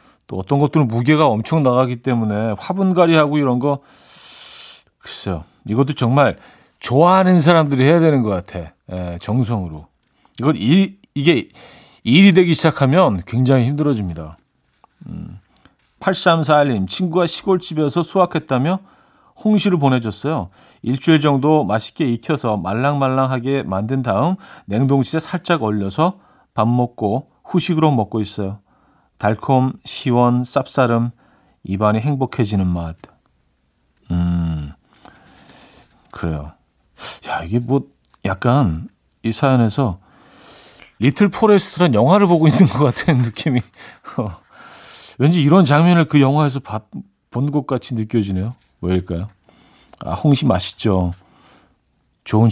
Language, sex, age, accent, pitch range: Korean, male, 40-59, native, 105-155 Hz